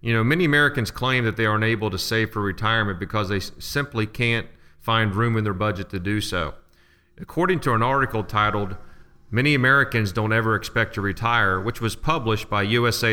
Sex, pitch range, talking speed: male, 100-120 Hz, 195 wpm